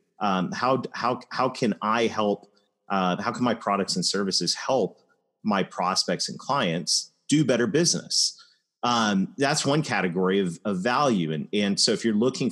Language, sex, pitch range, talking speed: English, male, 85-105 Hz, 170 wpm